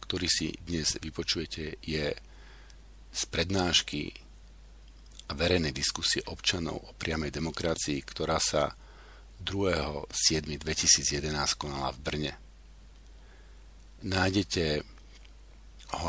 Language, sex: Slovak, male